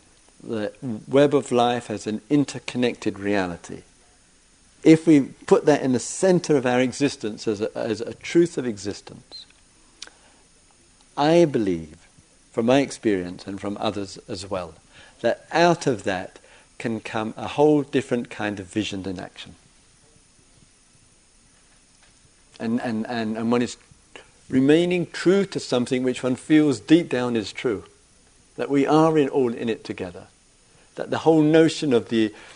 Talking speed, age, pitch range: 145 wpm, 50-69, 105-140 Hz